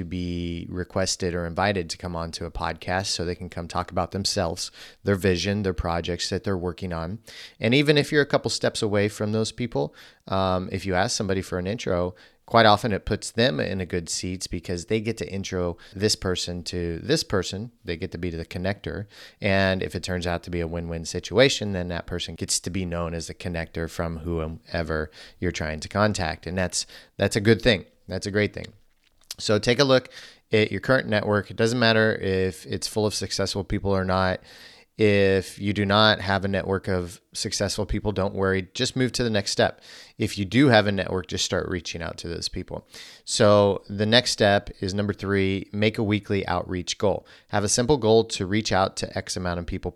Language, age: English, 30-49